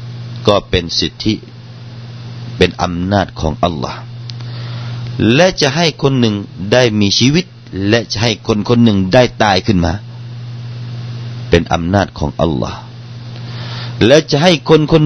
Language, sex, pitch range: Thai, male, 95-120 Hz